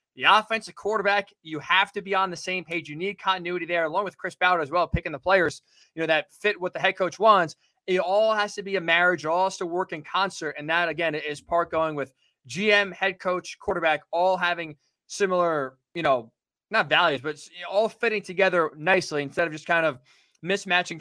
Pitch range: 155-190 Hz